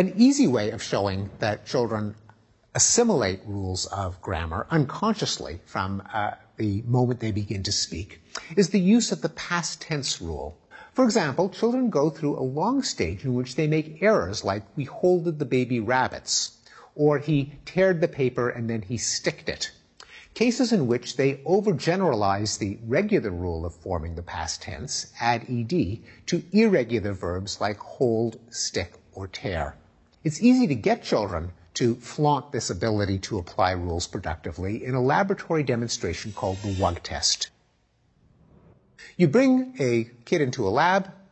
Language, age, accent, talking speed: English, 50-69, American, 155 wpm